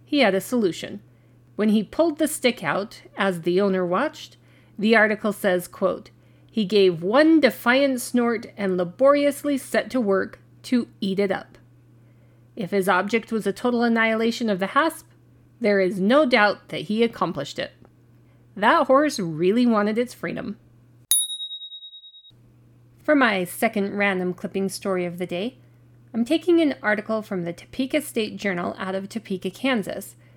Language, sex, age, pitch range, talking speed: English, female, 40-59, 175-245 Hz, 155 wpm